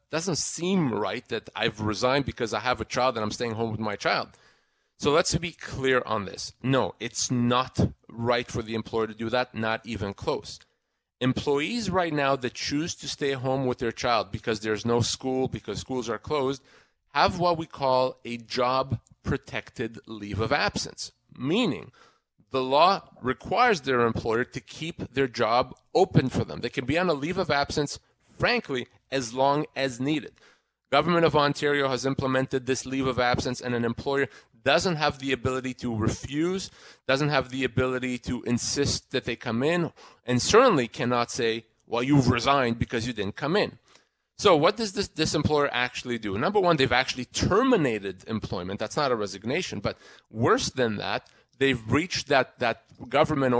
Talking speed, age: 175 wpm, 40-59